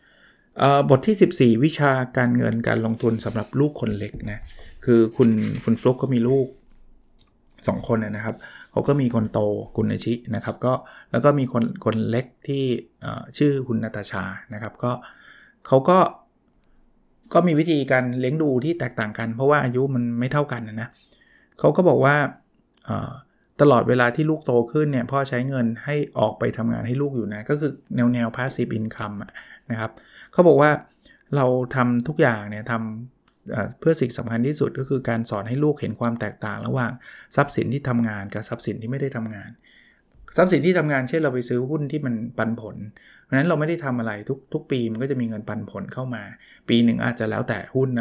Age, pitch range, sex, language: 20-39, 115-135 Hz, male, Thai